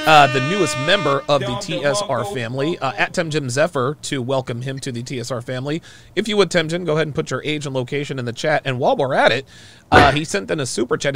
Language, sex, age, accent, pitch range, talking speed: English, male, 30-49, American, 120-150 Hz, 245 wpm